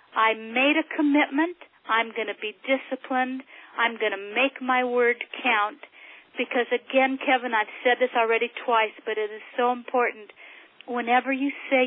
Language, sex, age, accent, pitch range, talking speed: English, female, 50-69, American, 225-265 Hz, 160 wpm